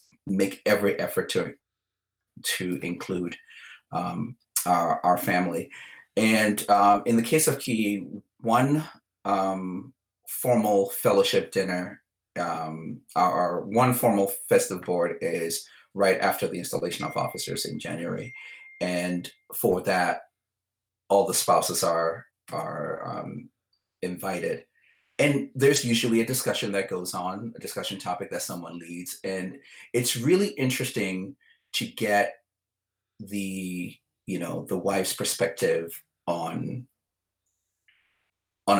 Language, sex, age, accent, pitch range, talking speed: English, male, 30-49, American, 90-125 Hz, 115 wpm